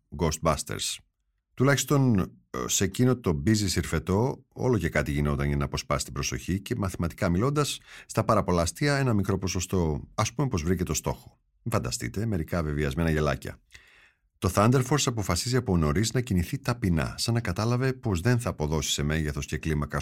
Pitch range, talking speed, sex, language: 80-120 Hz, 165 wpm, male, Greek